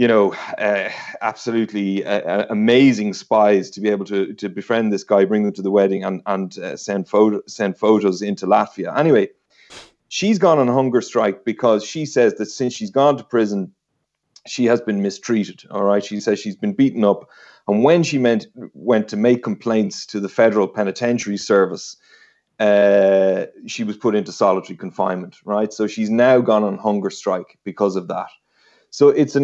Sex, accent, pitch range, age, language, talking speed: male, Irish, 100-120 Hz, 30-49, English, 180 wpm